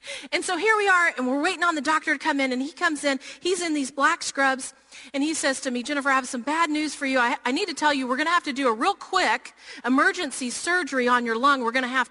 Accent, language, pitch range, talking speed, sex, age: American, English, 260-330 Hz, 295 wpm, female, 40-59